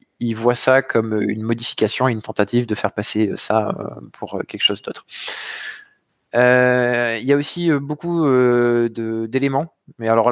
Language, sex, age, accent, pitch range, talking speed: French, male, 20-39, French, 110-130 Hz, 155 wpm